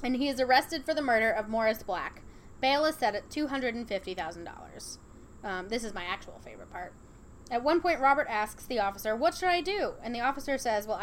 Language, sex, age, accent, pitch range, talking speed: English, female, 10-29, American, 215-275 Hz, 200 wpm